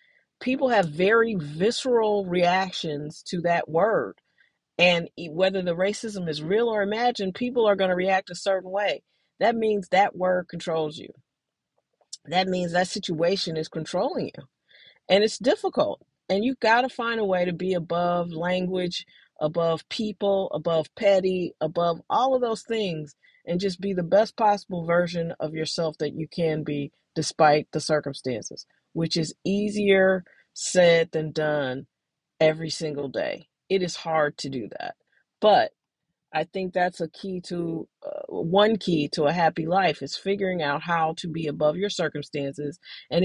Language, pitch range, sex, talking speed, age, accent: English, 160-200 Hz, female, 155 wpm, 40-59, American